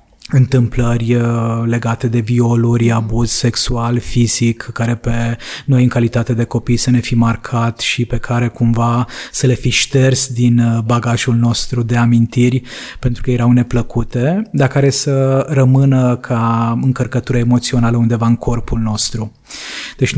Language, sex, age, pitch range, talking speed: Romanian, male, 20-39, 115-130 Hz, 140 wpm